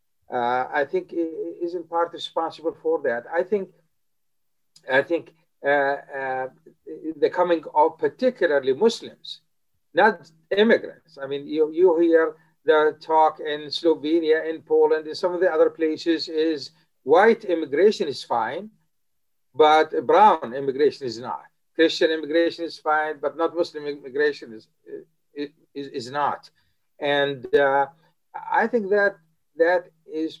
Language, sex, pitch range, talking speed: English, male, 145-210 Hz, 135 wpm